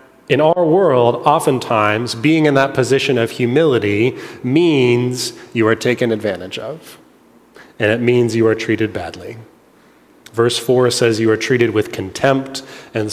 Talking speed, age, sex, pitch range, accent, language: 145 wpm, 30-49, male, 115-140 Hz, American, English